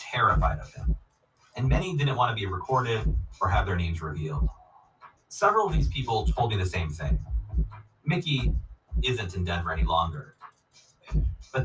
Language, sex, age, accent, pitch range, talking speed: English, male, 30-49, American, 75-125 Hz, 160 wpm